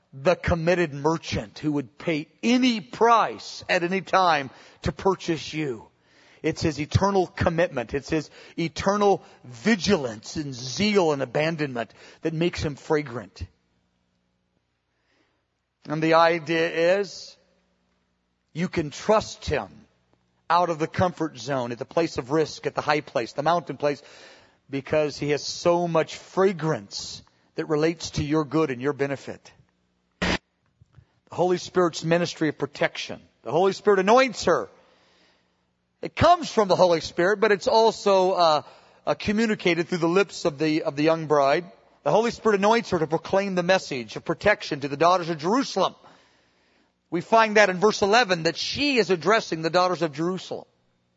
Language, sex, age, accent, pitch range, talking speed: English, male, 40-59, American, 125-185 Hz, 155 wpm